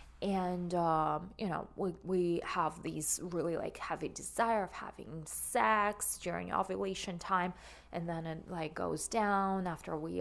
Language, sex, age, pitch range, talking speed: English, female, 20-39, 170-200 Hz, 155 wpm